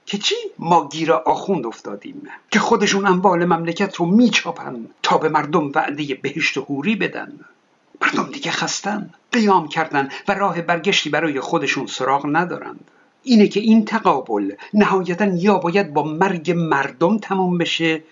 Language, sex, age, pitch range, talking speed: Persian, male, 60-79, 150-200 Hz, 140 wpm